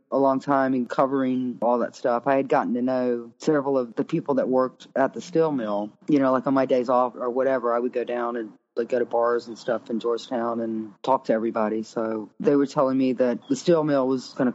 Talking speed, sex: 250 wpm, female